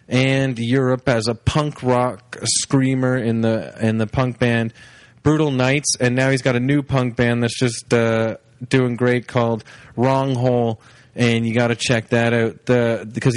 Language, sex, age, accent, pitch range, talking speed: English, male, 20-39, American, 115-135 Hz, 180 wpm